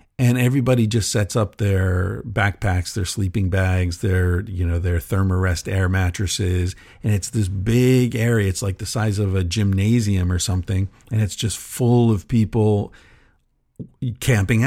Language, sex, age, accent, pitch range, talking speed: English, male, 50-69, American, 90-115 Hz, 160 wpm